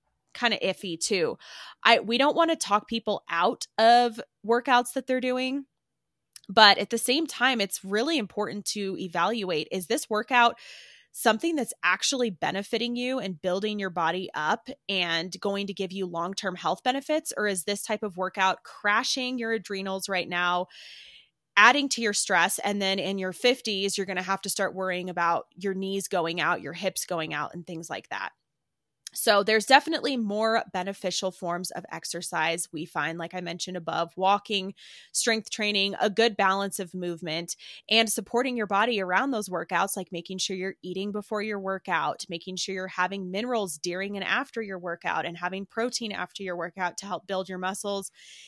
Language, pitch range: English, 185-230 Hz